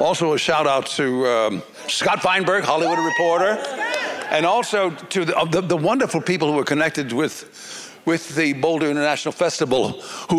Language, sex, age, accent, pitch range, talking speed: English, male, 60-79, American, 145-185 Hz, 155 wpm